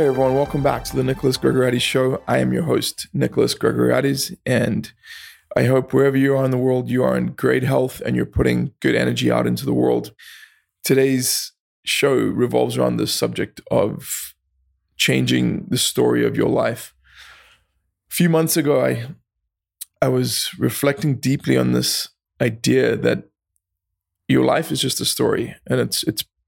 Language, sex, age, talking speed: English, male, 20-39, 165 wpm